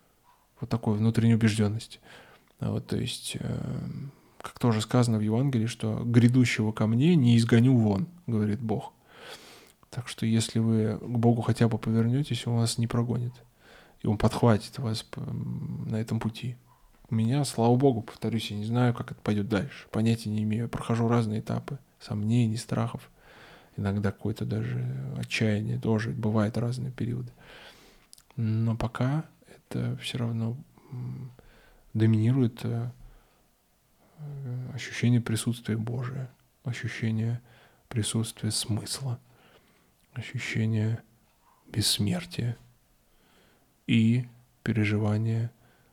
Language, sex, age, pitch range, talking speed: Russian, male, 20-39, 110-120 Hz, 110 wpm